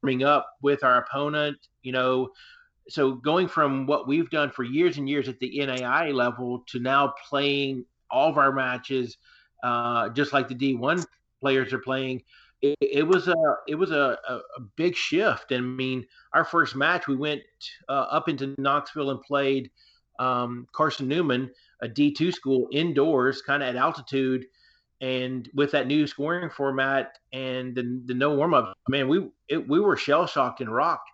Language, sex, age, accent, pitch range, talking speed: English, male, 40-59, American, 130-145 Hz, 175 wpm